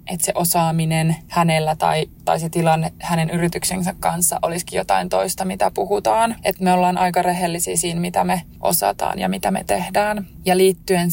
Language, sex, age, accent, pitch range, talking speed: Finnish, female, 20-39, native, 165-185 Hz, 165 wpm